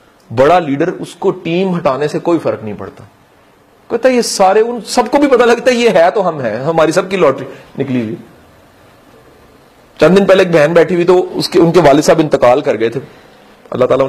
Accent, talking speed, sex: Indian, 225 wpm, male